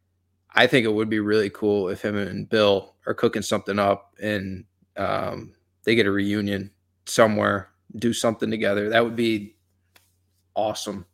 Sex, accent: male, American